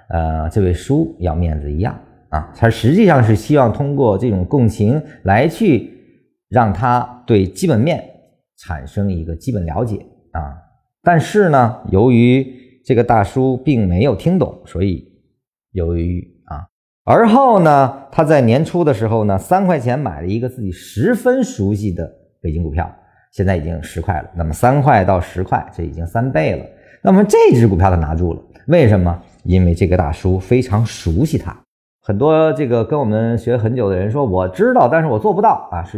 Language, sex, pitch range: Chinese, male, 90-135 Hz